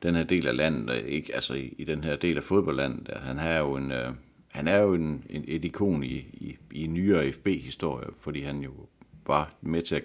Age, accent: 60-79, native